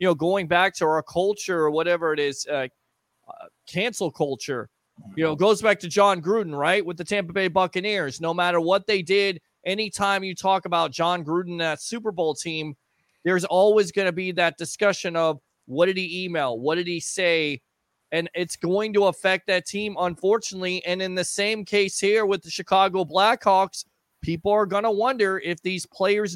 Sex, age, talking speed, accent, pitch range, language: male, 30-49, 195 wpm, American, 170-210 Hz, English